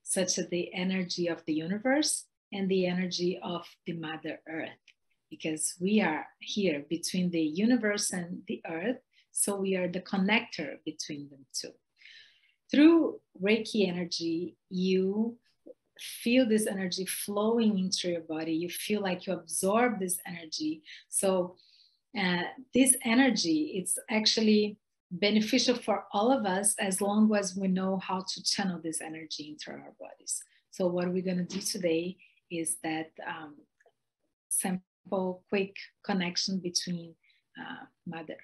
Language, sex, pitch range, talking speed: English, female, 175-210 Hz, 140 wpm